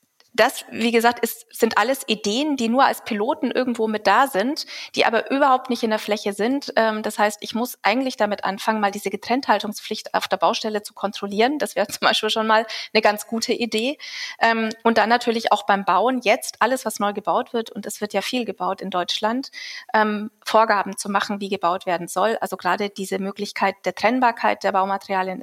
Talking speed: 200 wpm